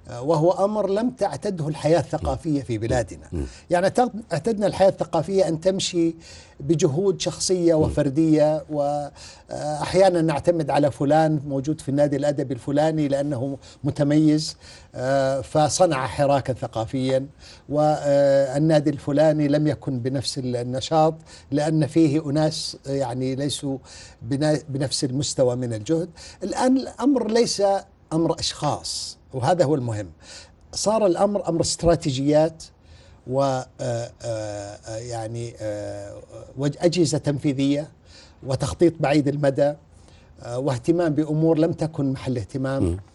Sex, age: male, 60-79